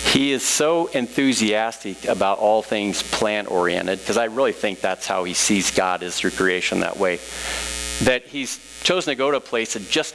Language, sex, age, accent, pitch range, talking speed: English, male, 50-69, American, 95-135 Hz, 195 wpm